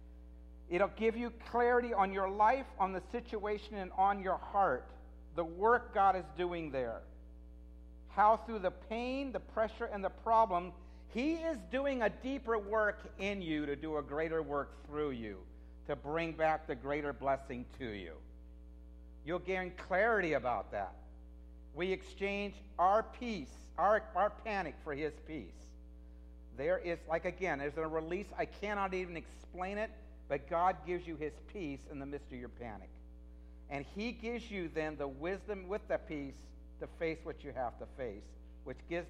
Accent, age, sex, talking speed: American, 50-69, male, 170 wpm